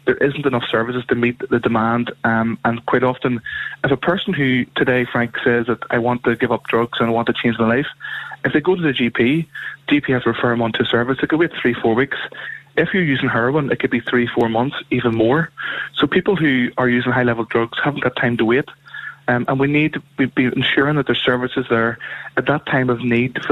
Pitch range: 115-135 Hz